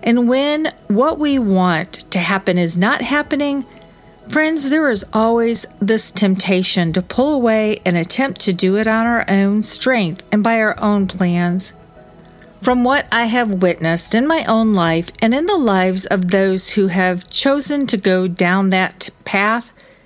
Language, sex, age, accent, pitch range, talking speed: English, female, 50-69, American, 185-235 Hz, 170 wpm